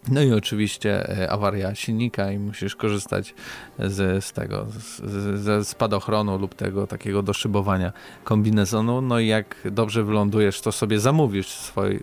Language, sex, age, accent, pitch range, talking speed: Polish, male, 20-39, native, 100-115 Hz, 130 wpm